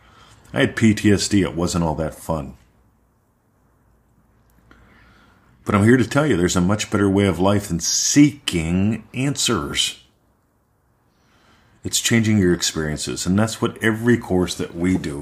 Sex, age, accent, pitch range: male, 40-59, American, 80-110 Hz